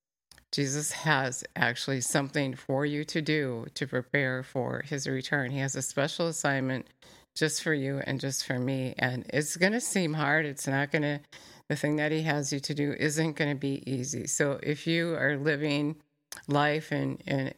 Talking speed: 190 wpm